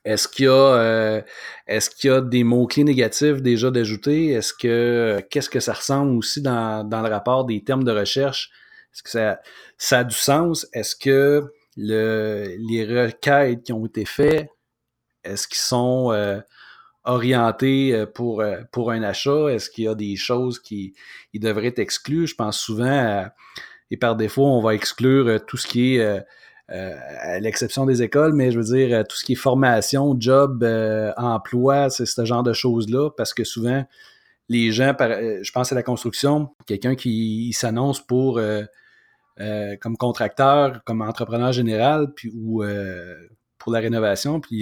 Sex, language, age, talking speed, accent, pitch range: male, French, 30-49, 175 wpm, Canadian, 110-135 Hz